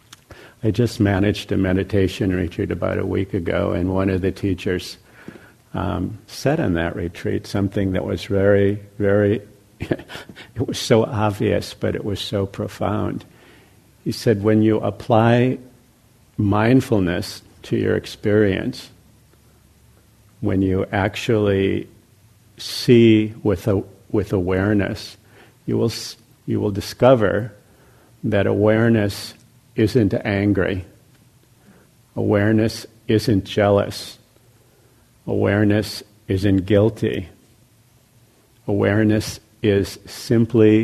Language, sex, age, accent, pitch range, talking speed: English, male, 70-89, American, 100-115 Hz, 105 wpm